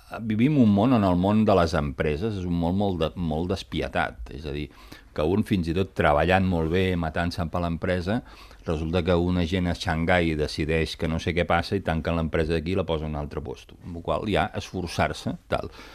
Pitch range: 75-100 Hz